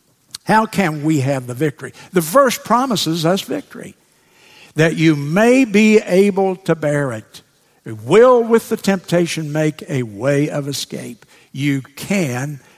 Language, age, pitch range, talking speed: English, 60-79, 125-165 Hz, 145 wpm